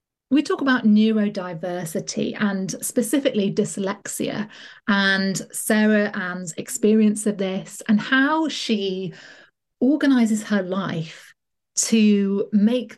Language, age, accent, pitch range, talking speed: English, 30-49, British, 195-235 Hz, 95 wpm